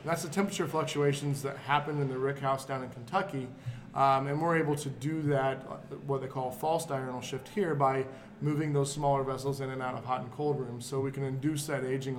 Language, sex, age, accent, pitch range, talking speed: English, male, 20-39, American, 130-145 Hz, 225 wpm